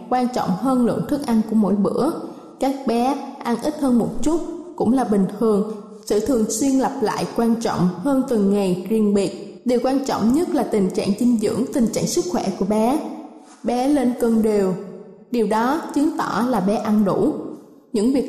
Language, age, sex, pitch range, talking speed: Vietnamese, 20-39, female, 215-280 Hz, 200 wpm